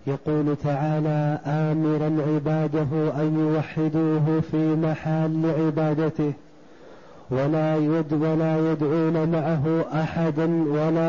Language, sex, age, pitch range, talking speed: Arabic, male, 30-49, 160-175 Hz, 85 wpm